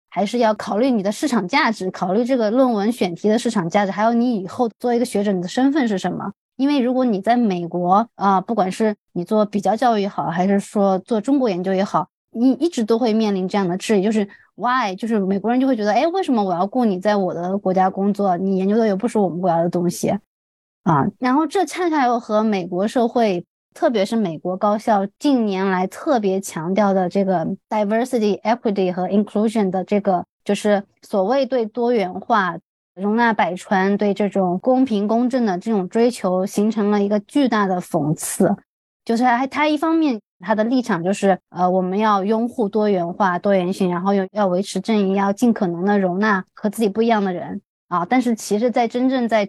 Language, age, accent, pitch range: Chinese, 20-39, native, 190-235 Hz